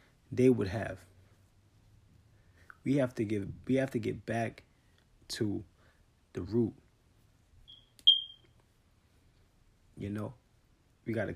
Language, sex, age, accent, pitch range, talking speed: English, male, 30-49, American, 105-125 Hz, 105 wpm